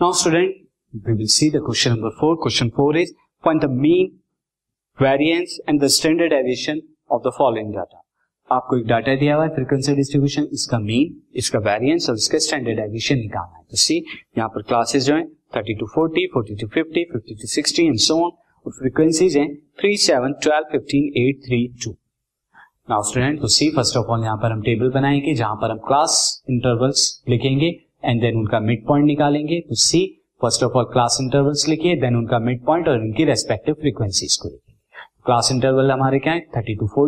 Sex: male